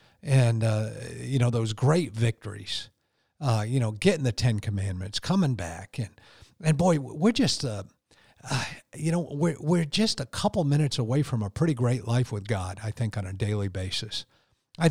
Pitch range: 110-145 Hz